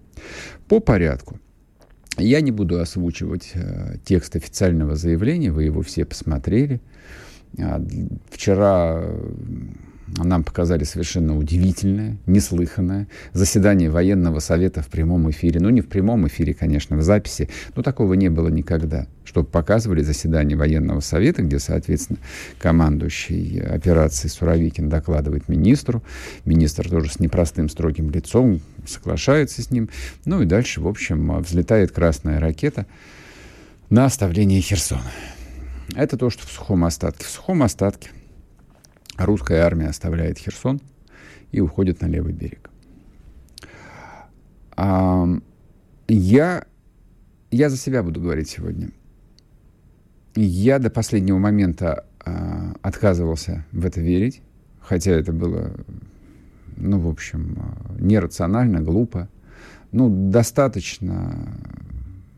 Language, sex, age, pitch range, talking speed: Russian, male, 50-69, 80-105 Hz, 110 wpm